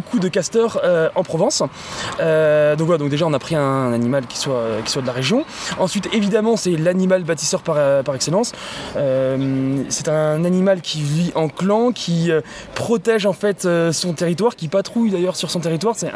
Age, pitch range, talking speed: 20-39, 160-200 Hz, 210 wpm